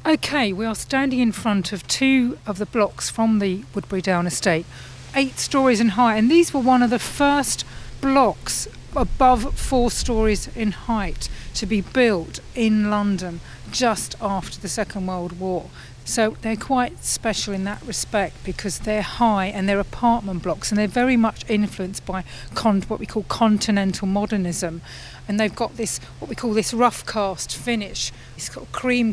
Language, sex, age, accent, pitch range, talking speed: English, female, 40-59, British, 195-245 Hz, 170 wpm